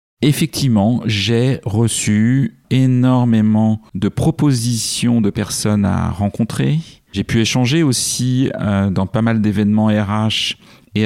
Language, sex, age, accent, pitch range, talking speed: French, male, 40-59, French, 95-120 Hz, 115 wpm